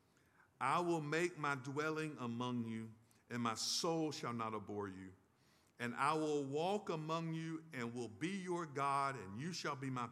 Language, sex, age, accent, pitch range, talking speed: English, male, 50-69, American, 125-165 Hz, 180 wpm